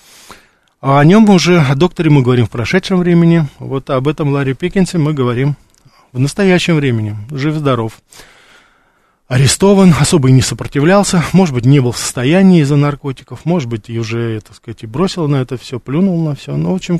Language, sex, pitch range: Russian, male, 125-165 Hz